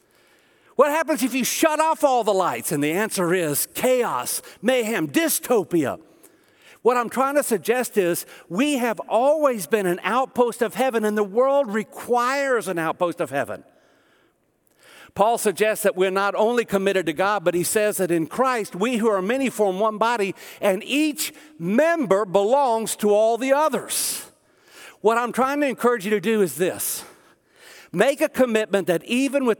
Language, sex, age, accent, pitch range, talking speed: English, male, 60-79, American, 185-255 Hz, 170 wpm